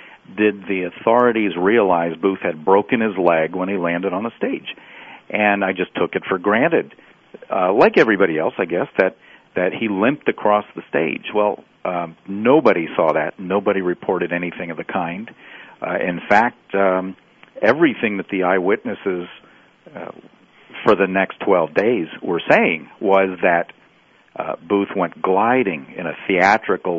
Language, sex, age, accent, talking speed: English, male, 50-69, American, 160 wpm